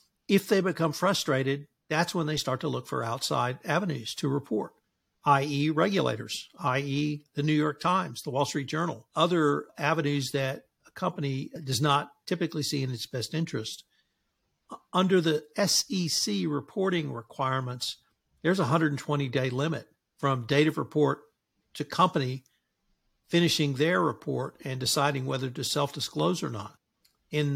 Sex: male